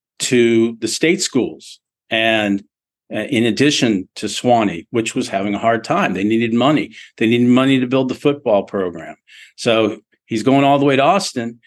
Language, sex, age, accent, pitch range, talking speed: English, male, 50-69, American, 110-135 Hz, 180 wpm